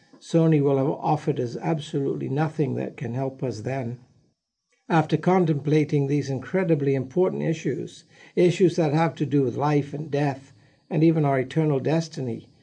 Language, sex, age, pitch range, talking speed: English, male, 60-79, 135-165 Hz, 150 wpm